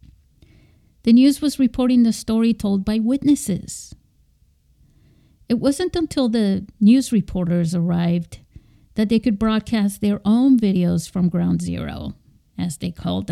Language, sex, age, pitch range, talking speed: English, female, 50-69, 180-225 Hz, 130 wpm